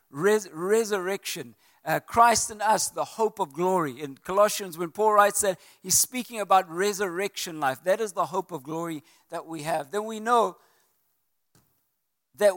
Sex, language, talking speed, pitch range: male, English, 160 wpm, 150-210 Hz